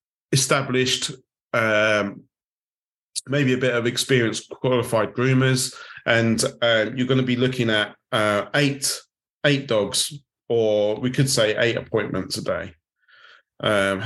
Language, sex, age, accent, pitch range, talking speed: English, male, 30-49, British, 110-135 Hz, 130 wpm